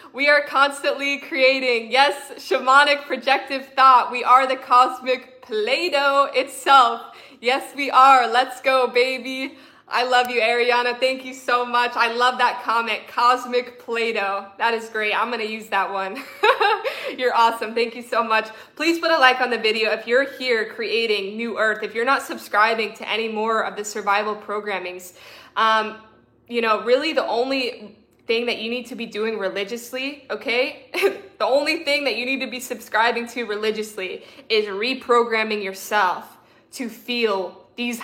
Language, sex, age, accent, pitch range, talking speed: English, female, 20-39, American, 220-265 Hz, 165 wpm